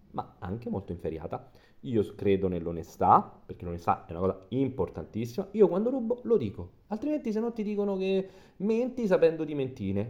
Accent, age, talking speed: native, 30-49, 165 wpm